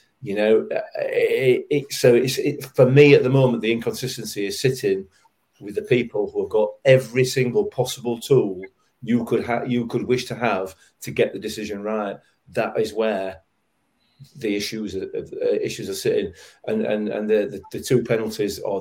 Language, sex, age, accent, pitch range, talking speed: English, male, 40-59, British, 100-130 Hz, 185 wpm